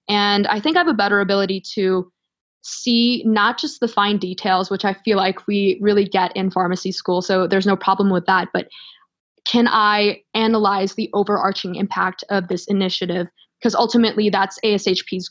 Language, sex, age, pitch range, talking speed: English, female, 20-39, 190-215 Hz, 175 wpm